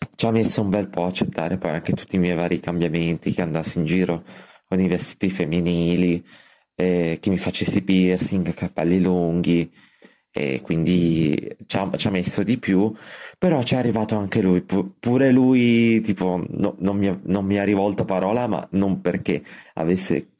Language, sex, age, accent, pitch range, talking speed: Italian, male, 30-49, native, 90-110 Hz, 175 wpm